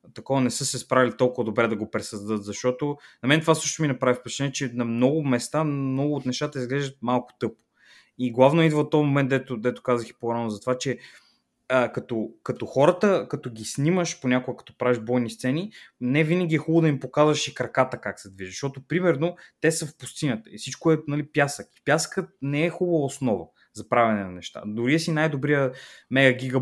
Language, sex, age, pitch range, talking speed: Bulgarian, male, 20-39, 125-160 Hz, 205 wpm